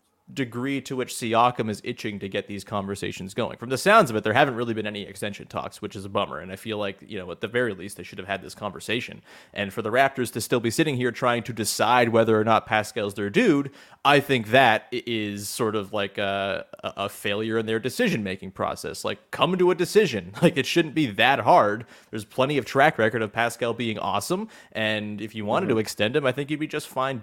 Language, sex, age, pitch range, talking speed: English, male, 30-49, 110-140 Hz, 240 wpm